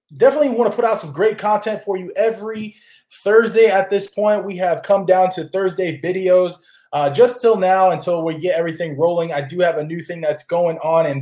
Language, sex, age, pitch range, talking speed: English, male, 20-39, 155-195 Hz, 220 wpm